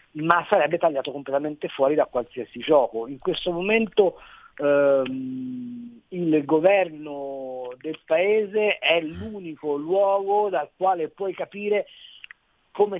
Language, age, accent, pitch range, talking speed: Italian, 50-69, native, 145-205 Hz, 110 wpm